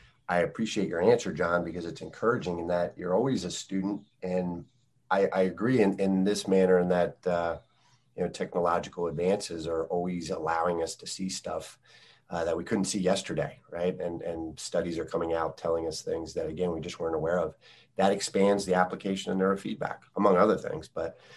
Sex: male